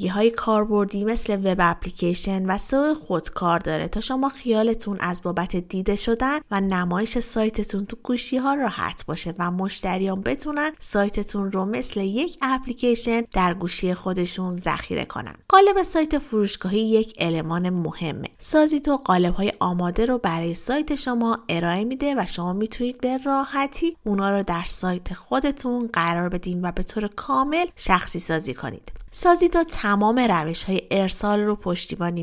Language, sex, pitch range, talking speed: Persian, female, 180-255 Hz, 145 wpm